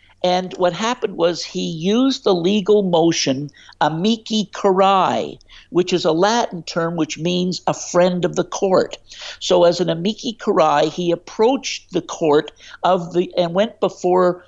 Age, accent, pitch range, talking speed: 60-79, American, 165-200 Hz, 155 wpm